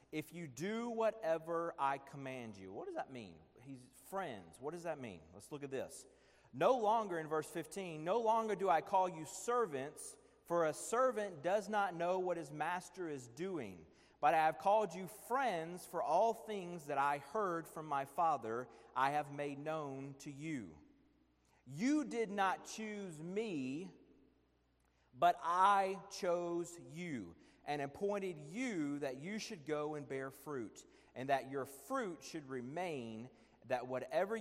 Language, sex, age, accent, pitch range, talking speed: English, male, 40-59, American, 125-190 Hz, 160 wpm